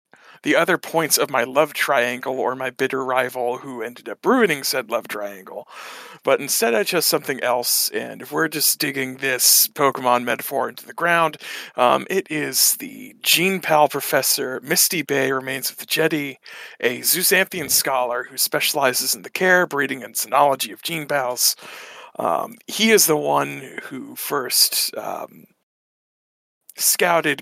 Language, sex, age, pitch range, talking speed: English, male, 40-59, 130-170 Hz, 155 wpm